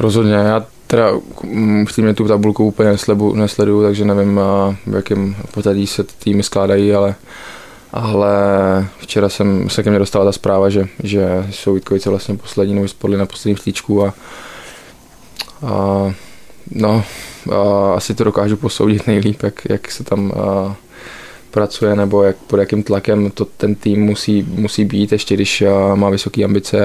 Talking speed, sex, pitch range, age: 160 wpm, male, 100-105 Hz, 20-39